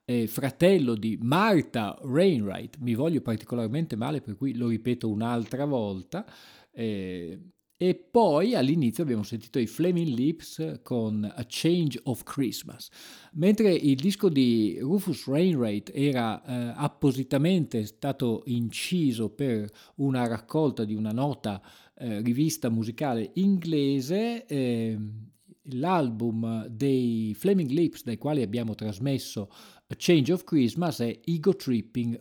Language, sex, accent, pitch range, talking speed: Italian, male, native, 115-160 Hz, 120 wpm